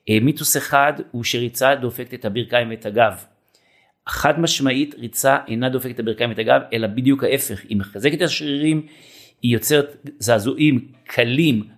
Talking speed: 150 wpm